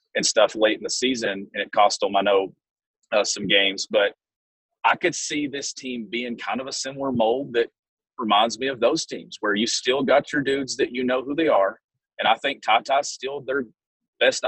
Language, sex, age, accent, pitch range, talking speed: English, male, 30-49, American, 115-135 Hz, 215 wpm